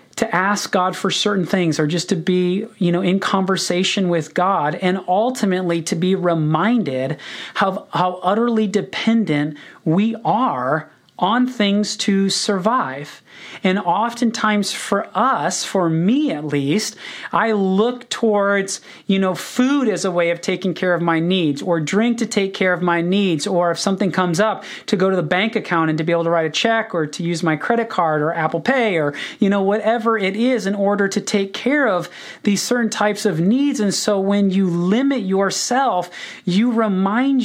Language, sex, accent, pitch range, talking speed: English, male, American, 175-215 Hz, 185 wpm